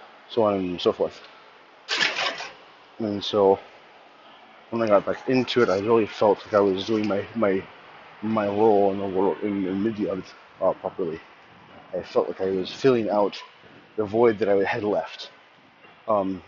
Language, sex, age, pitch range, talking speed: English, male, 30-49, 95-110 Hz, 170 wpm